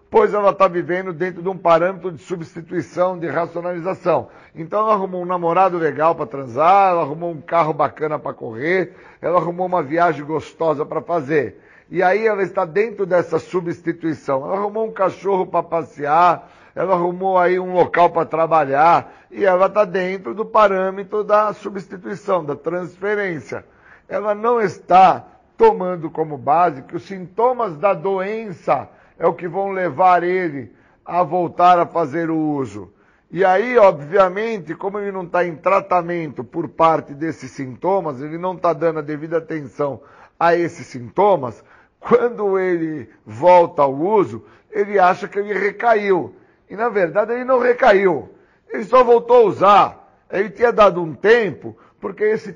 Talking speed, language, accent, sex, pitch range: 160 wpm, Portuguese, Brazilian, male, 165-200 Hz